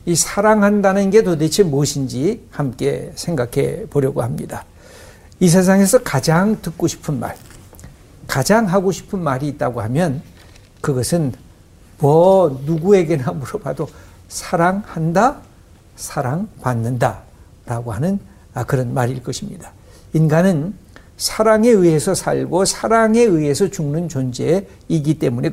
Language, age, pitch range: Korean, 60-79, 125-200 Hz